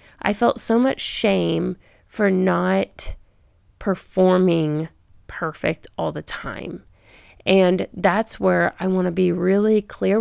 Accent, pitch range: American, 170-210 Hz